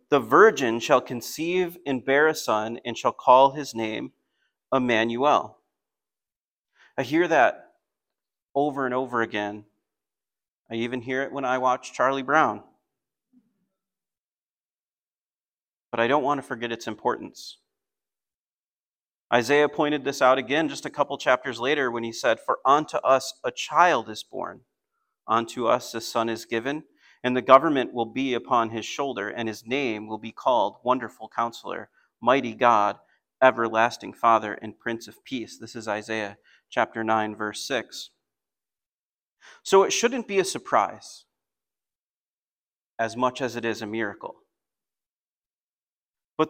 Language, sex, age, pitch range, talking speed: English, male, 30-49, 115-145 Hz, 140 wpm